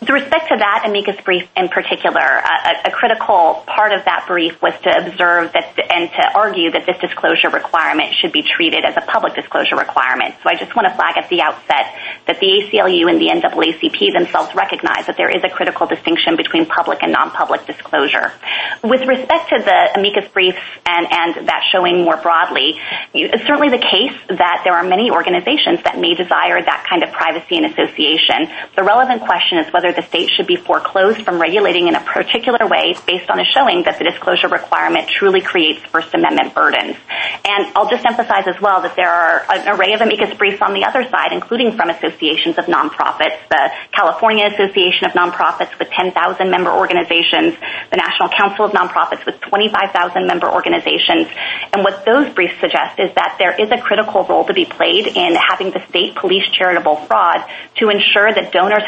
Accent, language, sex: American, English, female